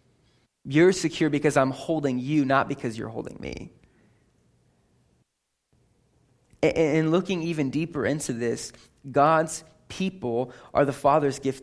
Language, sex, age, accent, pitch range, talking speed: English, male, 20-39, American, 140-195 Hz, 120 wpm